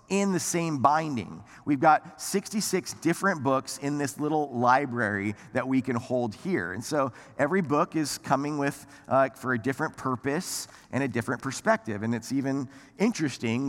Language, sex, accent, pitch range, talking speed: English, male, American, 120-165 Hz, 165 wpm